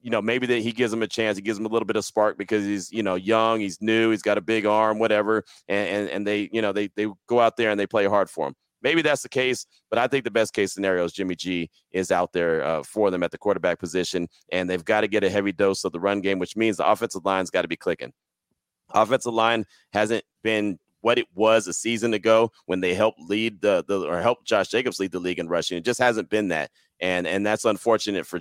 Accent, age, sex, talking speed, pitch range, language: American, 30-49, male, 270 wpm, 100-115 Hz, English